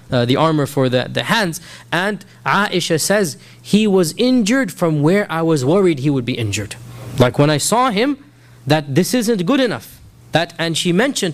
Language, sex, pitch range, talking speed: English, male, 130-175 Hz, 190 wpm